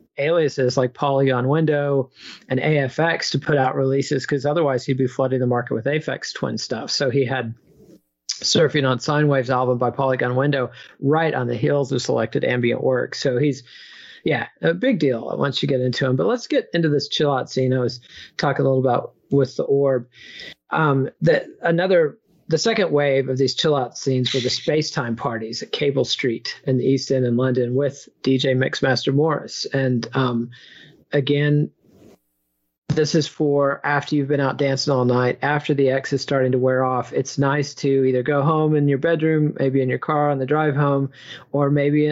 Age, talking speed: 40-59, 190 wpm